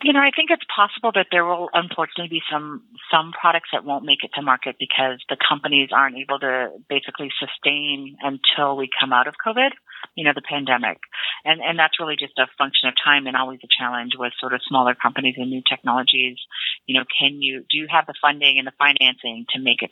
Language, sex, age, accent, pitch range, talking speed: English, female, 40-59, American, 130-170 Hz, 225 wpm